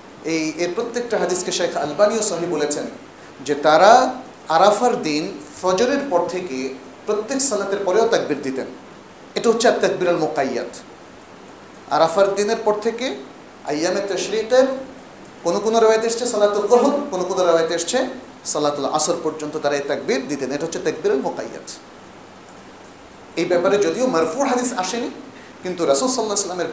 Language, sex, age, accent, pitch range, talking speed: Bengali, male, 40-59, native, 155-220 Hz, 135 wpm